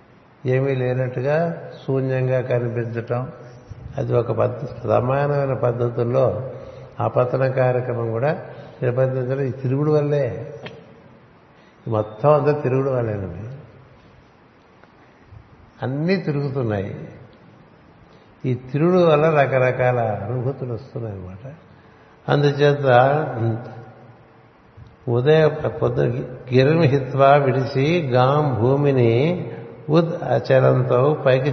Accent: native